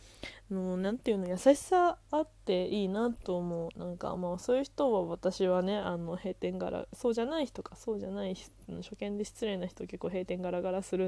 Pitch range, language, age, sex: 185-235 Hz, Japanese, 20-39, female